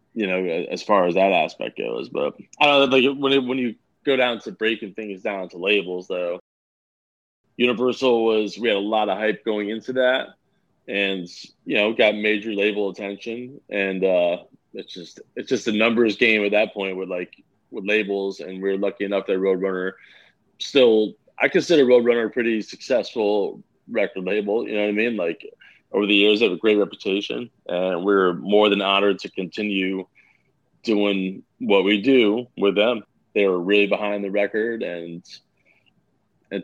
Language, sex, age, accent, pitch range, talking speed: English, male, 30-49, American, 95-115 Hz, 180 wpm